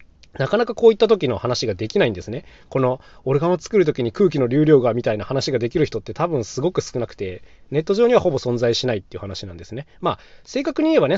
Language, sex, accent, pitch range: Japanese, male, native, 100-160 Hz